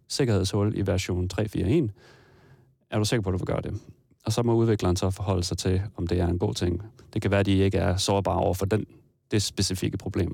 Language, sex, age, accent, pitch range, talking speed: Danish, male, 30-49, native, 95-120 Hz, 230 wpm